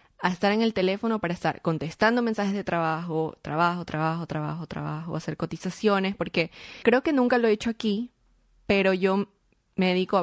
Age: 20-39